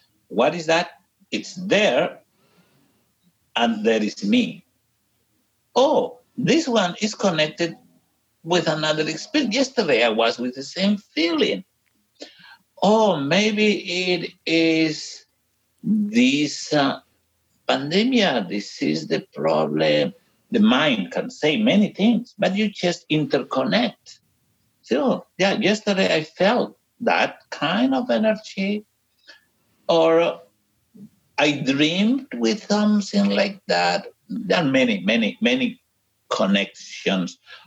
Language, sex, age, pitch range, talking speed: English, male, 60-79, 155-220 Hz, 105 wpm